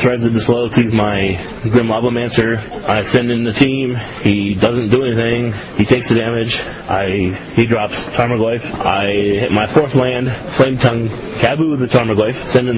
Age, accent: 30-49, American